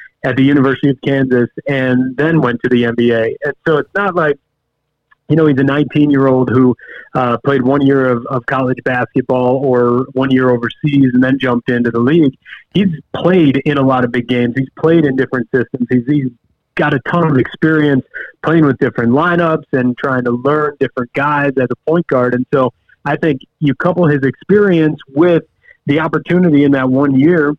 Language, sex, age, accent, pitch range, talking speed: English, male, 40-59, American, 130-155 Hz, 195 wpm